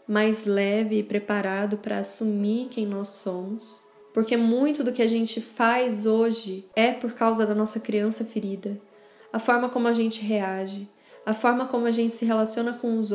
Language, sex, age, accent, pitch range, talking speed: Portuguese, female, 10-29, Brazilian, 205-230 Hz, 180 wpm